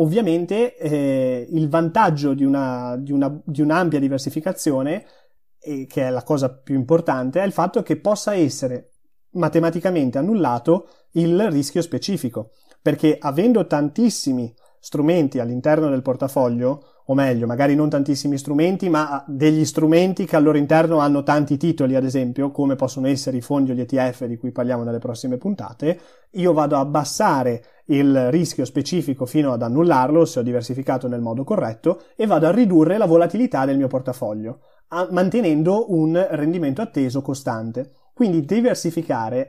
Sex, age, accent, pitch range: male, 30-49, native, 135-175 Hz